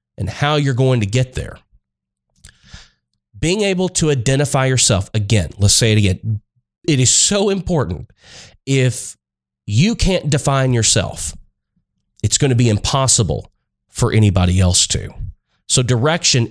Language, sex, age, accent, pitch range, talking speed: English, male, 30-49, American, 105-135 Hz, 135 wpm